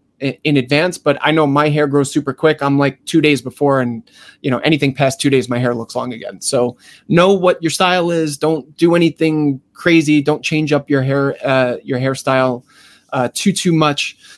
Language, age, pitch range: English, 20-39, 130-165 Hz